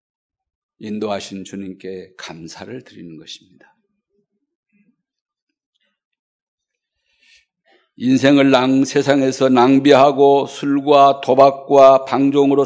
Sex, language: male, Korean